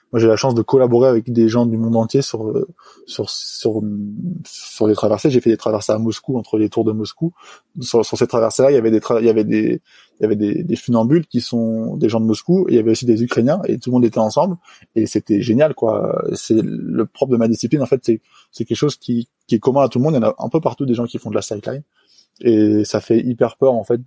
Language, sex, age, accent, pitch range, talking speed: French, male, 20-39, French, 110-125 Hz, 280 wpm